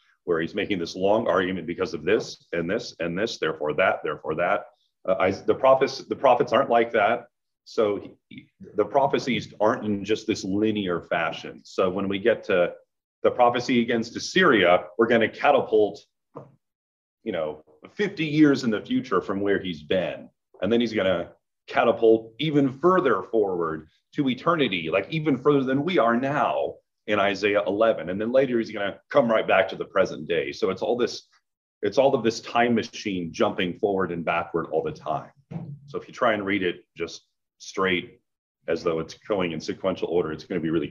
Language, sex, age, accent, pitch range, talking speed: English, male, 30-49, American, 100-150 Hz, 195 wpm